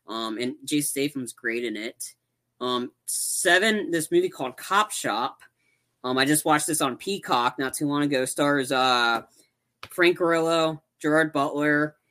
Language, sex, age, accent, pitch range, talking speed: English, female, 20-39, American, 140-170 Hz, 155 wpm